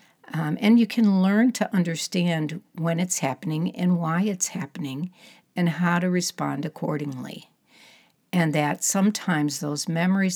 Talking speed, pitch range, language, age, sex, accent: 140 wpm, 145-185 Hz, English, 60-79, female, American